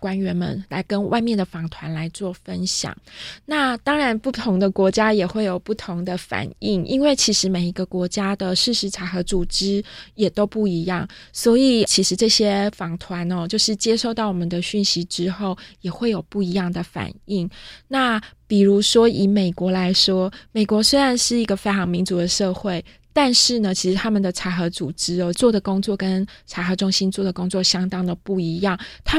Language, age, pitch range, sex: Chinese, 20-39, 180-210 Hz, female